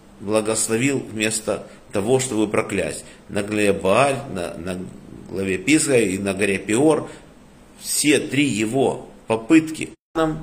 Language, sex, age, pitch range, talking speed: Russian, male, 50-69, 100-130 Hz, 115 wpm